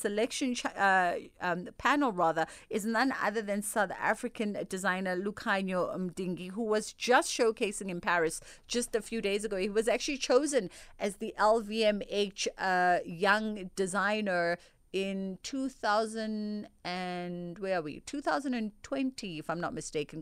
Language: English